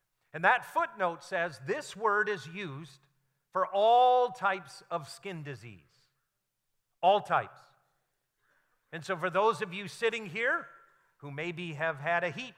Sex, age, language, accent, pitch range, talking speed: male, 50-69, English, American, 145-215 Hz, 145 wpm